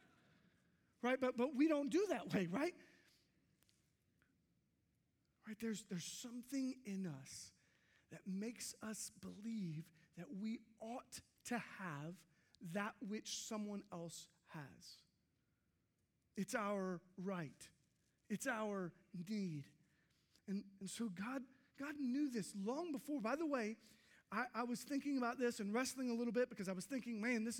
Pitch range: 195-260 Hz